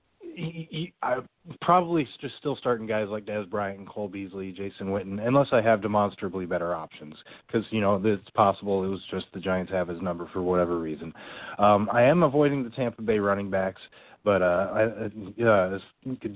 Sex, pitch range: male, 95-120 Hz